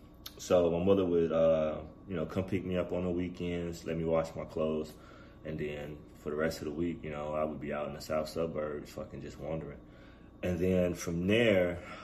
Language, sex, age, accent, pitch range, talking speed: English, male, 30-49, American, 80-90 Hz, 220 wpm